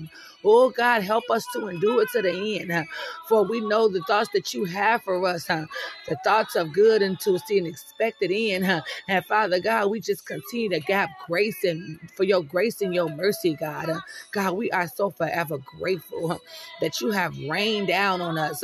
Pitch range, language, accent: 175-220 Hz, English, American